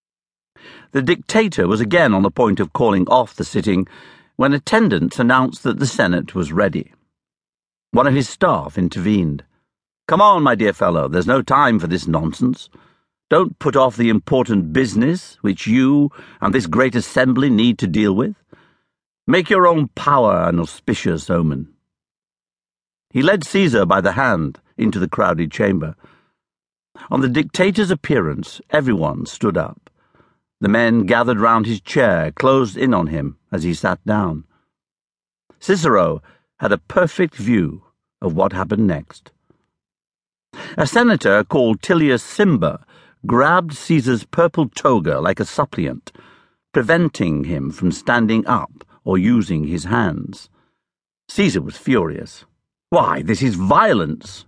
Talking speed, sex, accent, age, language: 140 wpm, male, British, 60-79, English